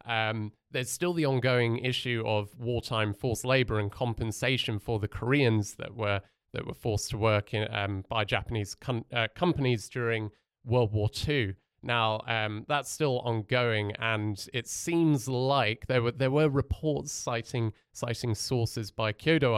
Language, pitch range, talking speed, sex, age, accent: English, 110-130 Hz, 160 wpm, male, 30-49, British